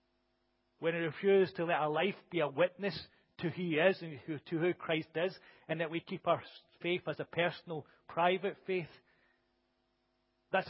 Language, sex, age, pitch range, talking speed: English, male, 40-59, 135-175 Hz, 180 wpm